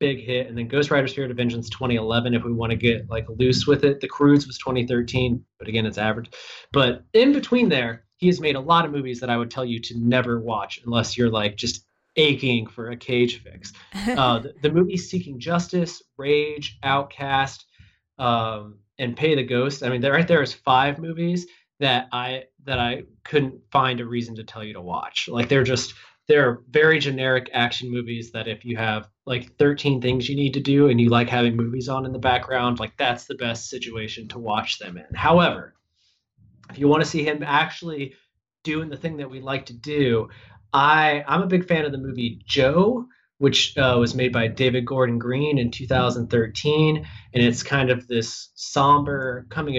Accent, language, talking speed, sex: American, English, 200 wpm, male